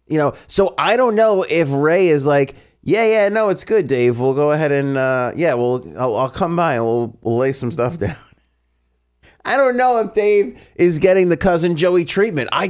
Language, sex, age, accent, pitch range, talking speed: English, male, 30-49, American, 100-160 Hz, 215 wpm